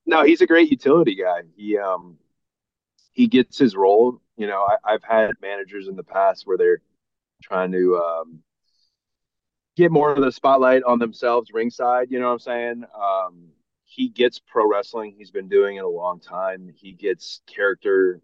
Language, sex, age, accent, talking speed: English, male, 30-49, American, 180 wpm